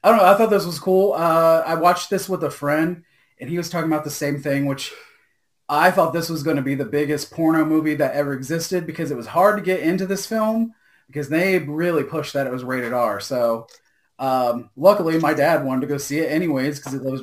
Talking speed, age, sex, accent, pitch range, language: 245 wpm, 30-49, male, American, 130-165 Hz, English